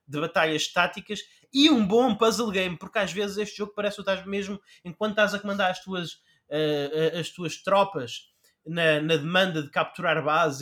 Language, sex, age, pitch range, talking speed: Portuguese, male, 20-39, 155-215 Hz, 180 wpm